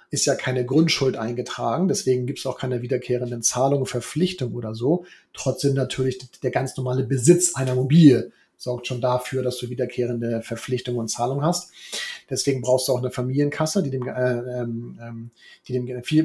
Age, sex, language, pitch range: 40-59, male, German, 125-155 Hz